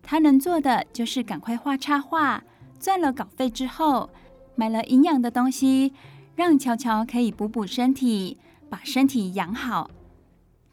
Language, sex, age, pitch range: Chinese, female, 20-39, 215-270 Hz